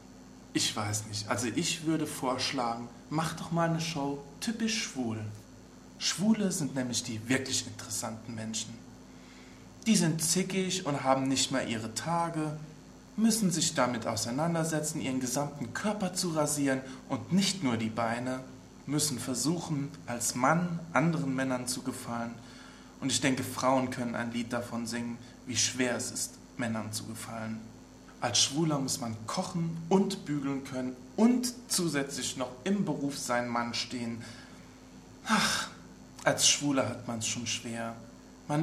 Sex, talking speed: male, 145 wpm